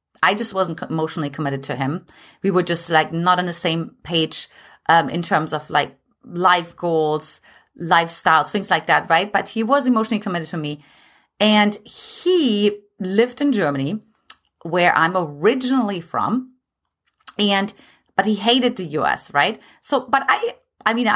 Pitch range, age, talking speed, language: 170-240 Hz, 30-49, 160 wpm, English